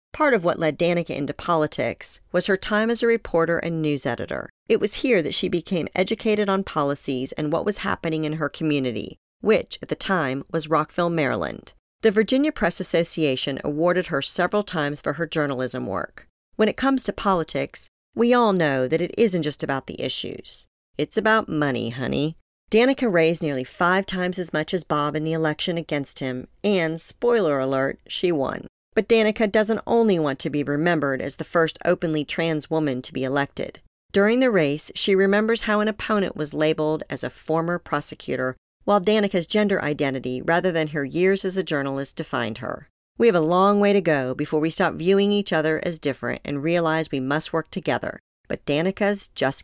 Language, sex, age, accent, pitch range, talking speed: English, female, 40-59, American, 145-200 Hz, 190 wpm